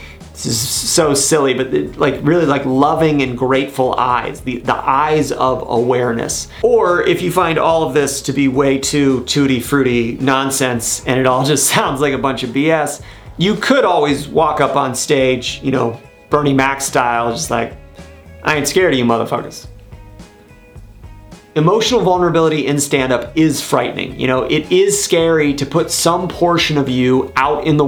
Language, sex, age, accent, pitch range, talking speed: English, male, 30-49, American, 125-155 Hz, 175 wpm